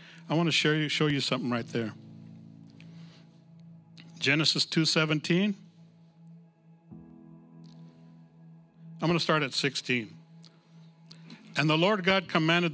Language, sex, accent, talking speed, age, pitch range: English, male, American, 115 wpm, 60-79, 145-170 Hz